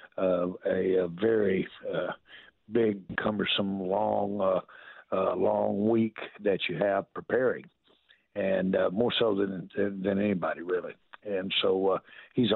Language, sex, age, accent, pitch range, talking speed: English, male, 60-79, American, 95-105 Hz, 140 wpm